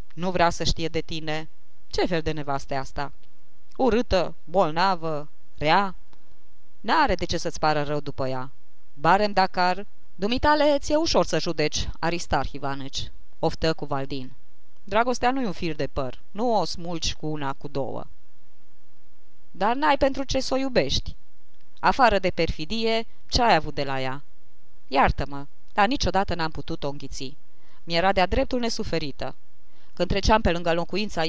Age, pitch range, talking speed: 20-39, 140-195 Hz, 150 wpm